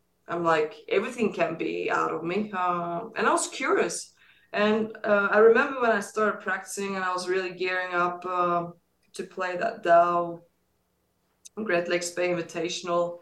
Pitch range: 175-215 Hz